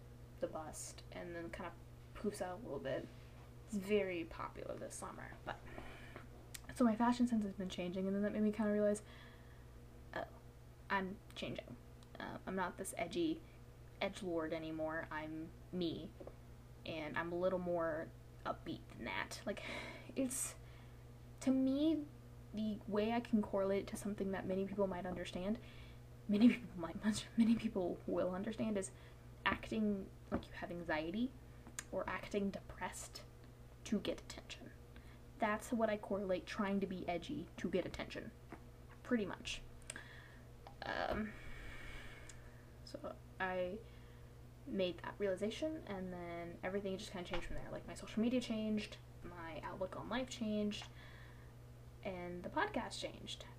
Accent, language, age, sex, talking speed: American, English, 10-29, female, 145 wpm